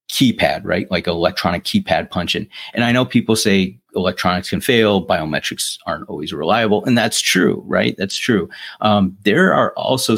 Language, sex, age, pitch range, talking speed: English, male, 30-49, 95-110 Hz, 165 wpm